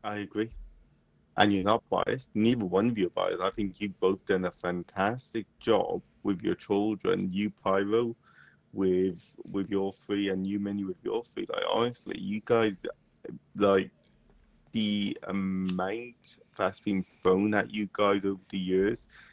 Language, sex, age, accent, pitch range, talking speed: English, male, 30-49, British, 95-115 Hz, 160 wpm